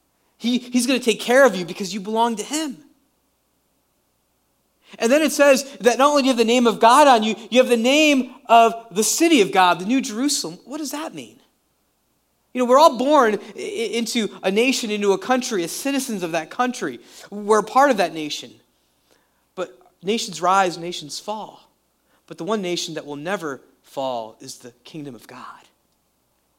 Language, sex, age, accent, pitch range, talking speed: English, male, 30-49, American, 180-245 Hz, 185 wpm